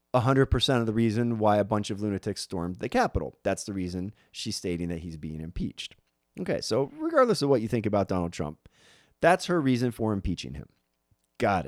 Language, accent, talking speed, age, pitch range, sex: English, American, 190 wpm, 30-49, 85-130 Hz, male